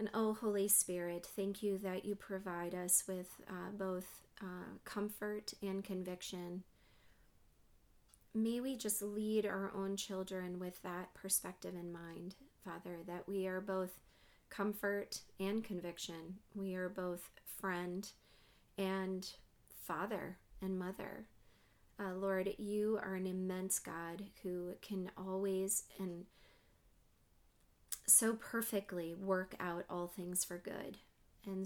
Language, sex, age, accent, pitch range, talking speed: English, female, 30-49, American, 180-200 Hz, 125 wpm